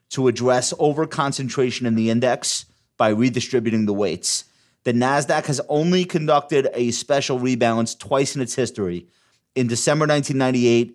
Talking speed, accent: 135 wpm, American